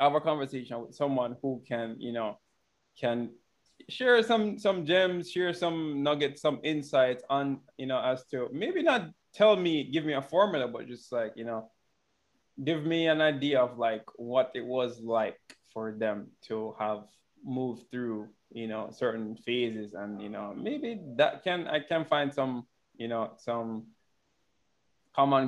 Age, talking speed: 20-39, 165 wpm